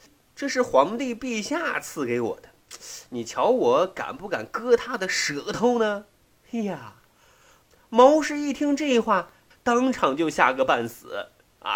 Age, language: 30-49, Chinese